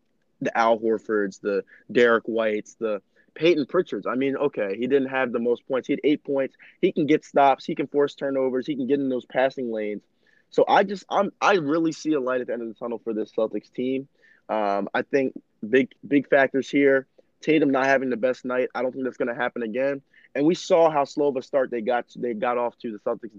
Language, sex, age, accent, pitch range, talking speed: English, male, 20-39, American, 120-145 Hz, 240 wpm